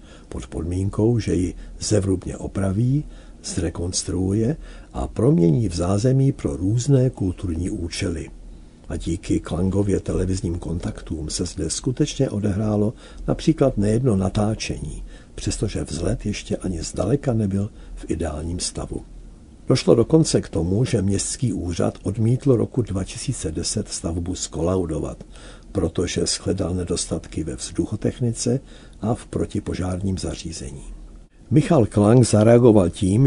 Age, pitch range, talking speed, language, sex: 60-79, 85-110 Hz, 110 wpm, Czech, male